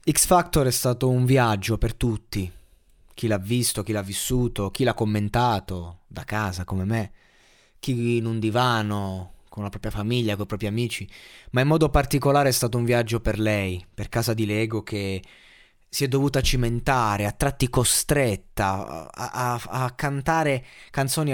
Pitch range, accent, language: 110-145 Hz, native, Italian